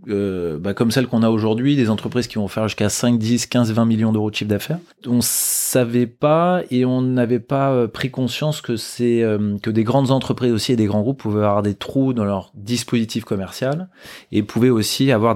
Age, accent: 20-39, French